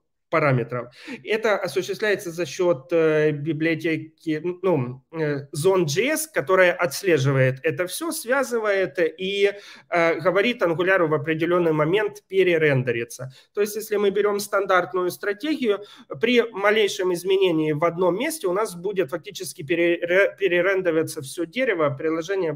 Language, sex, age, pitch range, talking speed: Ukrainian, male, 30-49, 160-210 Hz, 115 wpm